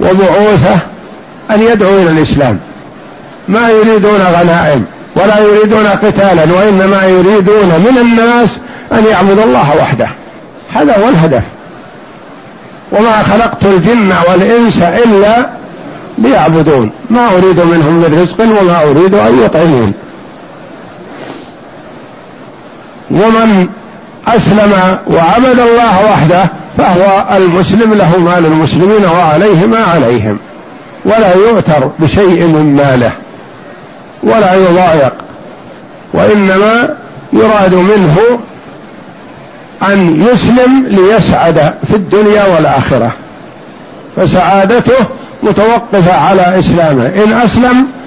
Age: 60-79